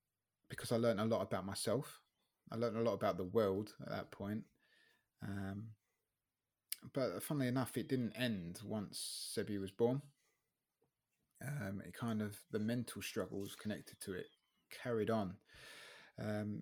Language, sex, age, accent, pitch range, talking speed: English, male, 20-39, British, 100-115 Hz, 150 wpm